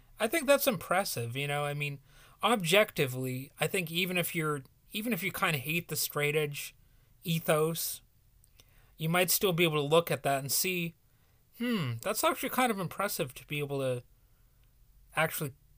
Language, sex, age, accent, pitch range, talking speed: English, male, 30-49, American, 125-170 Hz, 175 wpm